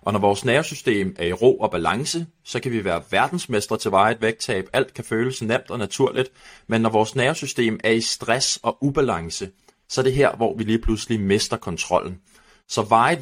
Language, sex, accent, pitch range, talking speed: Danish, male, native, 105-130 Hz, 200 wpm